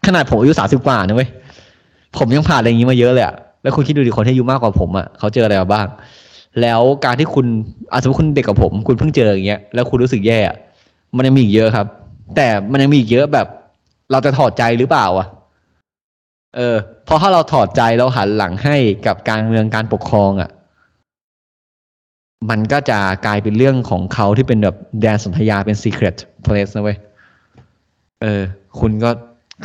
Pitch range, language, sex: 105-135 Hz, Thai, male